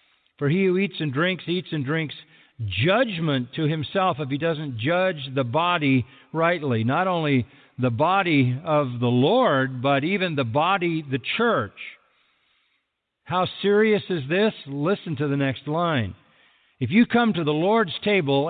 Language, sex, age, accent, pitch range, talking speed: English, male, 50-69, American, 130-185 Hz, 155 wpm